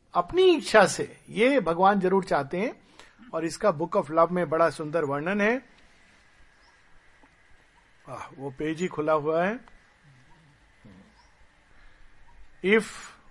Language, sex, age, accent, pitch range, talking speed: Hindi, male, 50-69, native, 145-190 Hz, 115 wpm